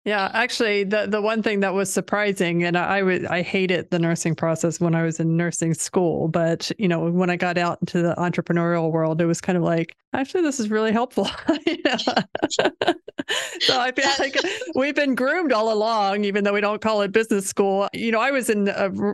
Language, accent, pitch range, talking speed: English, American, 175-205 Hz, 205 wpm